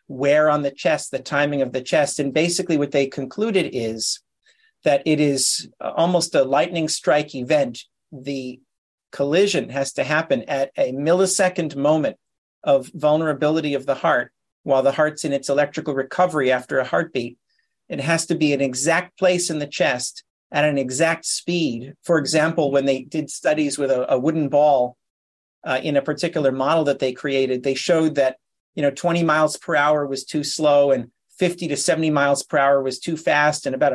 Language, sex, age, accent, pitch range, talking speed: English, male, 50-69, American, 135-165 Hz, 185 wpm